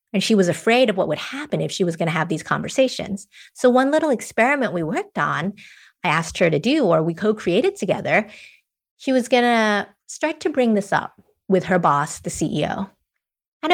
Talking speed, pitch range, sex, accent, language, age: 205 wpm, 175-240 Hz, female, American, English, 30-49